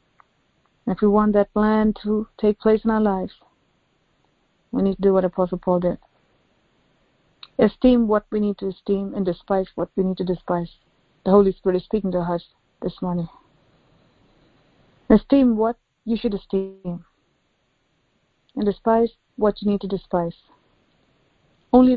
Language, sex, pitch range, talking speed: English, female, 185-215 Hz, 150 wpm